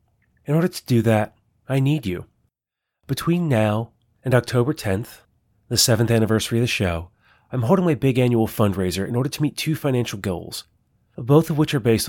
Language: English